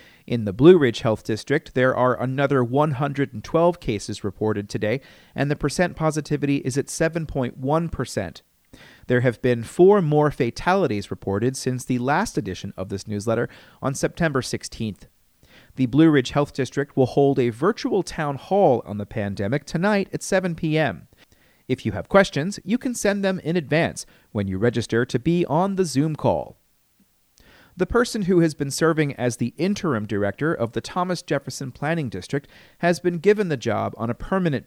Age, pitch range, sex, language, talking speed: 40-59, 115-165 Hz, male, English, 170 wpm